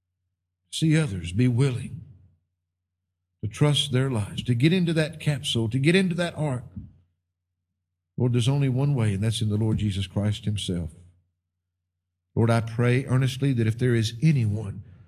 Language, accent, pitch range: English, American, 95-155 Hz